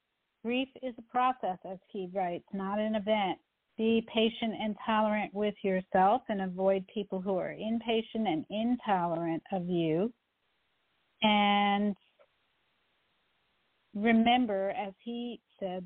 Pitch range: 190-225 Hz